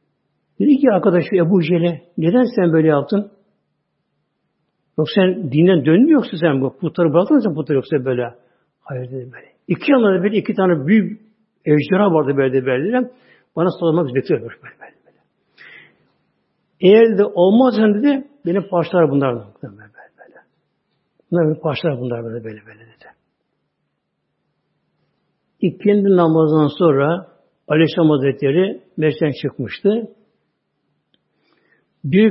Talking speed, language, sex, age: 135 wpm, Turkish, male, 60-79